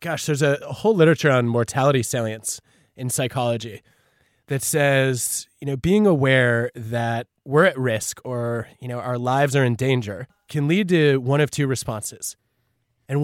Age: 20-39